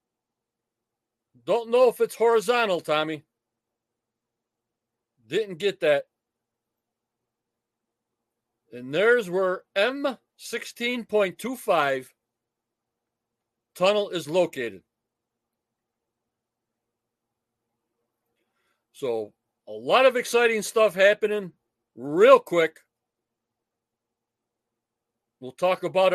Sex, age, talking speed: male, 50-69, 65 wpm